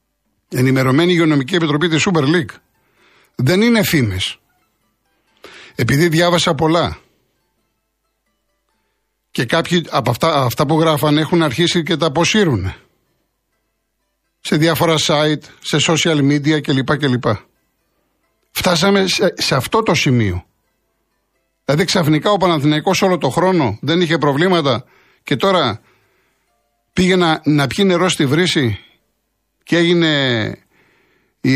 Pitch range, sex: 135-175 Hz, male